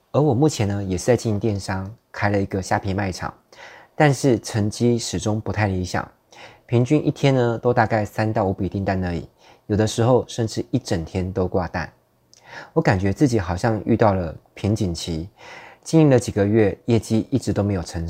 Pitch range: 95-120 Hz